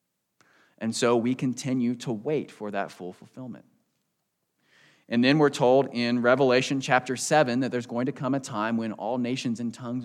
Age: 20-39